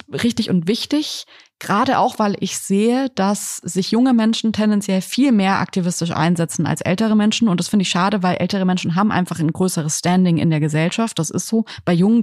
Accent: German